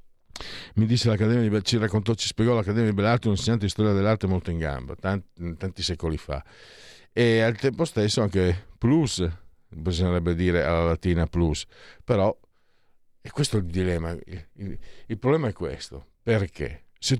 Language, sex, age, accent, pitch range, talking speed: Italian, male, 50-69, native, 90-130 Hz, 175 wpm